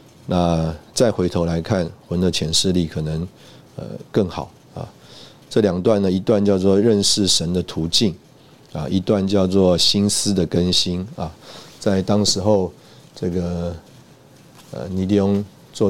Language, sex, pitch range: Chinese, male, 90-105 Hz